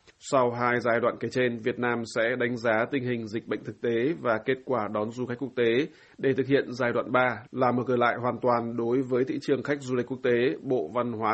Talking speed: 260 wpm